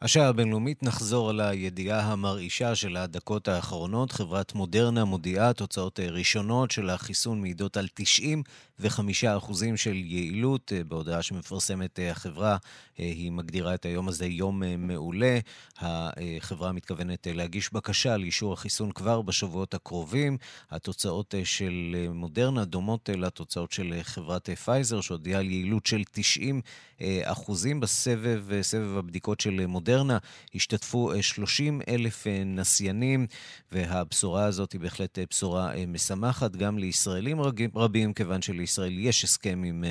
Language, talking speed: Hebrew, 115 wpm